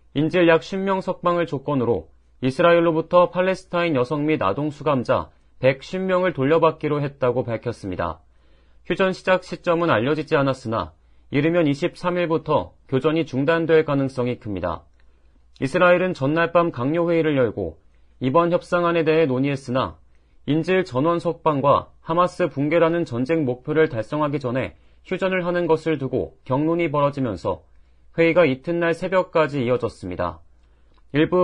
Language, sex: Korean, male